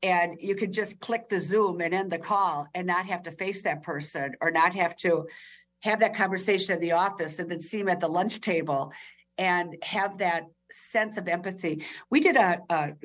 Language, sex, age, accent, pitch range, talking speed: English, female, 50-69, American, 170-210 Hz, 205 wpm